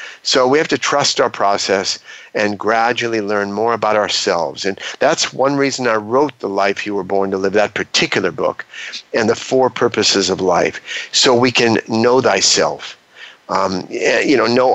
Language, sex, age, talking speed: English, male, 50-69, 180 wpm